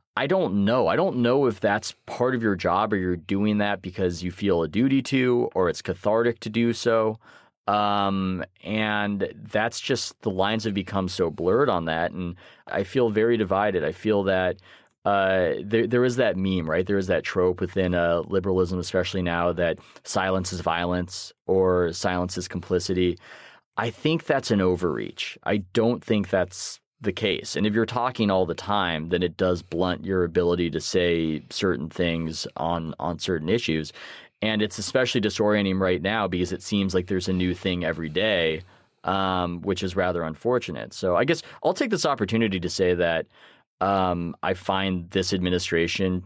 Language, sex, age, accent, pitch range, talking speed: English, male, 20-39, American, 90-105 Hz, 180 wpm